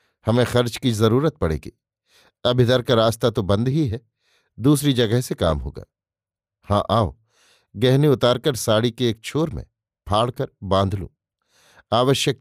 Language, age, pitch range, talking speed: Hindi, 50-69, 100-130 Hz, 150 wpm